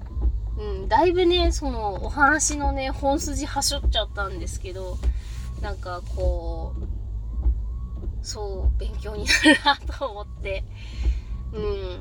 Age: 20-39